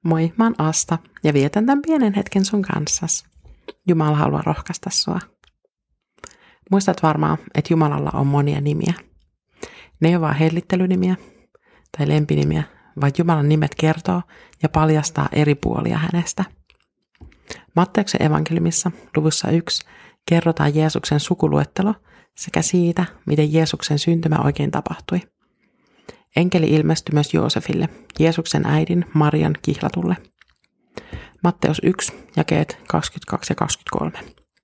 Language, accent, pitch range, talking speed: Finnish, native, 150-180 Hz, 115 wpm